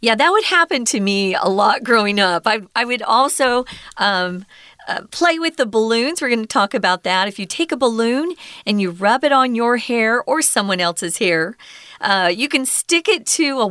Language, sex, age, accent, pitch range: Chinese, female, 40-59, American, 190-275 Hz